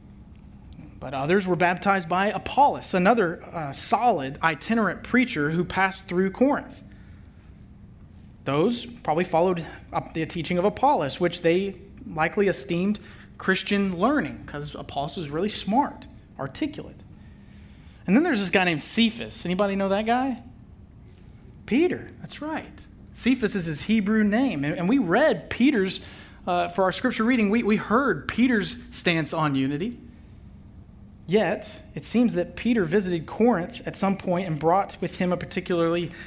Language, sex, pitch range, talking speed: English, male, 150-205 Hz, 145 wpm